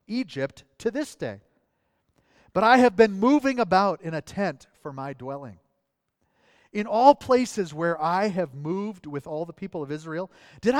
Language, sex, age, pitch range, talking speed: English, male, 40-59, 155-210 Hz, 165 wpm